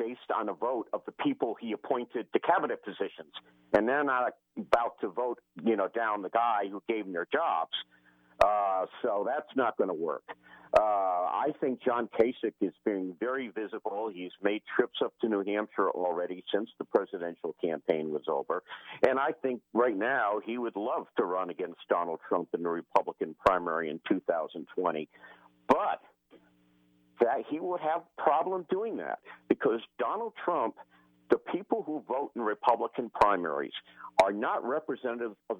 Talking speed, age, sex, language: 165 wpm, 50-69, male, English